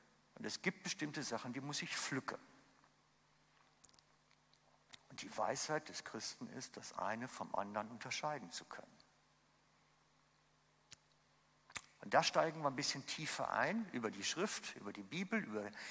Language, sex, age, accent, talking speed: German, male, 60-79, German, 140 wpm